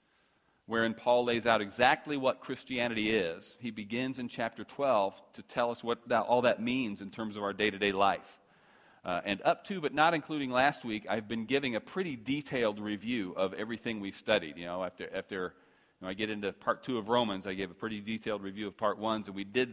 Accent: American